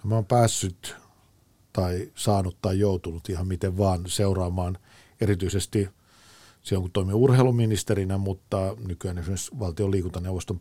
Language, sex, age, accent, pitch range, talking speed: Finnish, male, 50-69, native, 90-105 Hz, 120 wpm